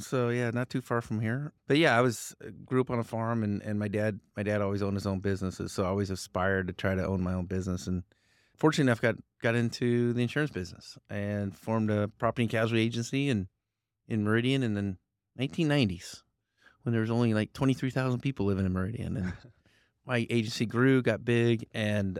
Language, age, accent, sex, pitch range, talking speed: English, 30-49, American, male, 100-120 Hz, 215 wpm